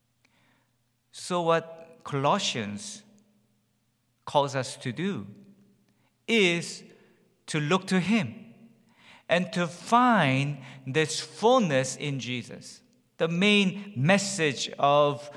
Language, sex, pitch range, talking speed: English, male, 135-195 Hz, 90 wpm